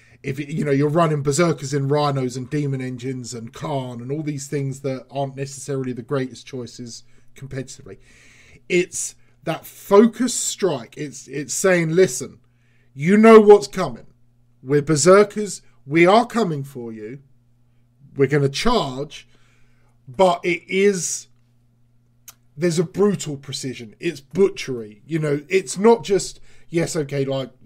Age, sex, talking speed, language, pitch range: 40-59, male, 140 wpm, English, 125-165 Hz